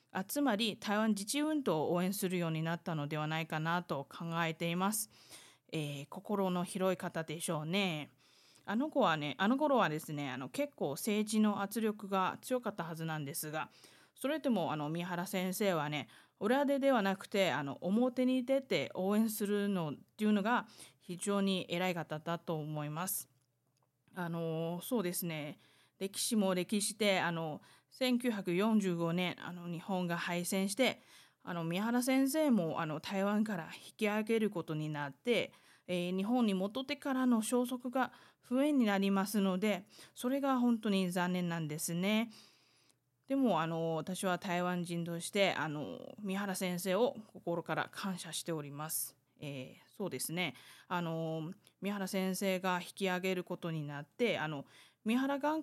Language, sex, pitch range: Japanese, female, 165-215 Hz